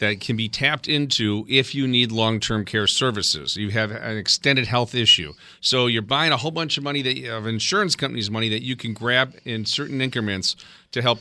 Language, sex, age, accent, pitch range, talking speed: English, male, 40-59, American, 110-145 Hz, 205 wpm